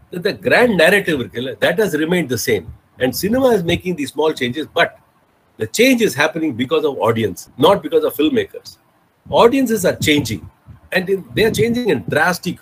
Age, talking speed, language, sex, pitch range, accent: 50-69, 180 wpm, Tamil, male, 130-200 Hz, native